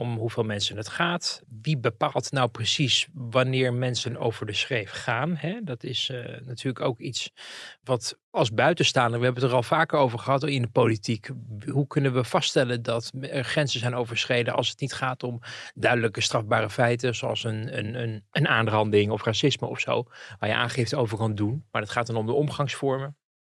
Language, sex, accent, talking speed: Dutch, male, Dutch, 190 wpm